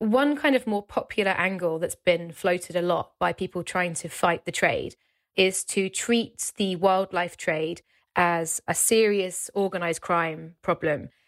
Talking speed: 160 wpm